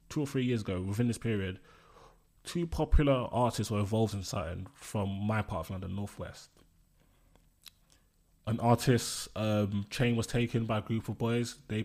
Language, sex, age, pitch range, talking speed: English, male, 20-39, 100-120 Hz, 165 wpm